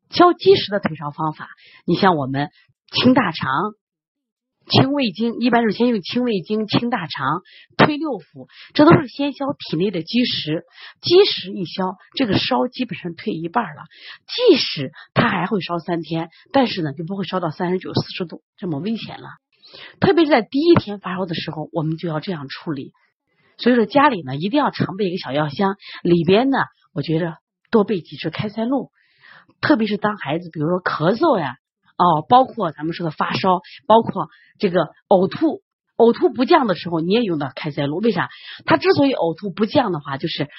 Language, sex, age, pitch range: Chinese, female, 30-49, 165-245 Hz